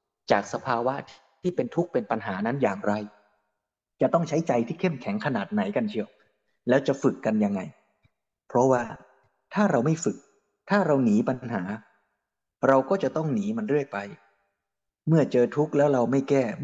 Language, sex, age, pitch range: Thai, male, 20-39, 115-165 Hz